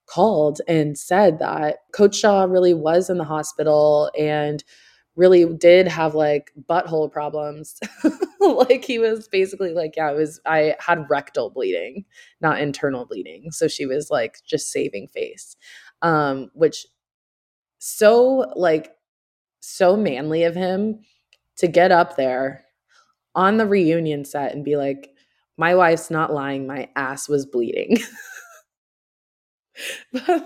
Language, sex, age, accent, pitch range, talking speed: English, female, 20-39, American, 145-185 Hz, 135 wpm